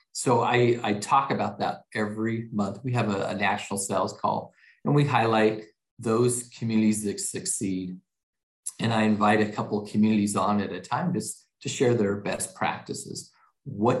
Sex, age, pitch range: male, 40-59, 105-120 Hz